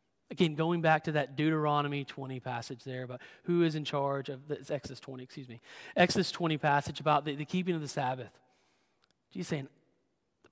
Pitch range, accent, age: 145-185 Hz, American, 30-49